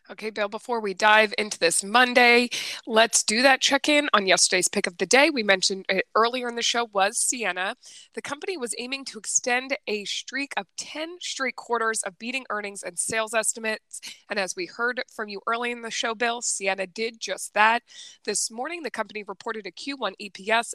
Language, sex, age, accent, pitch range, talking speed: English, female, 20-39, American, 200-245 Hz, 195 wpm